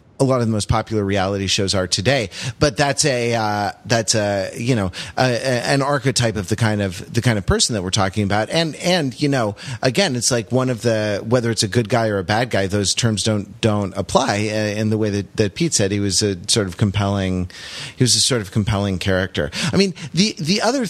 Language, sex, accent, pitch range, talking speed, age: English, male, American, 105-130 Hz, 240 wpm, 30-49